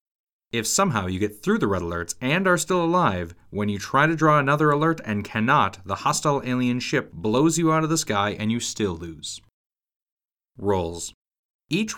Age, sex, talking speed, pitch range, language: 30-49, male, 185 wpm, 95-130 Hz, English